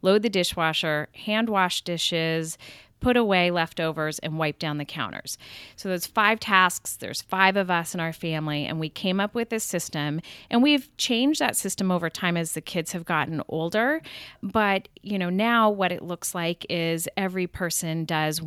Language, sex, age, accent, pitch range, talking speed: English, female, 40-59, American, 165-210 Hz, 185 wpm